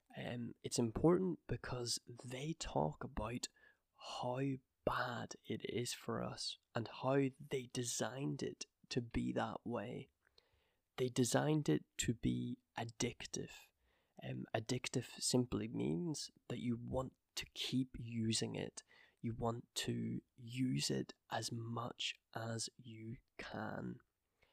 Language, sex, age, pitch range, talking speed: English, male, 20-39, 115-130 Hz, 120 wpm